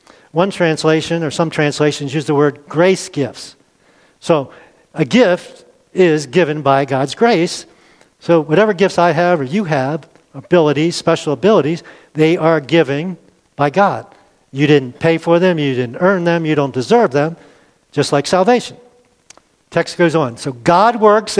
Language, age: English, 50-69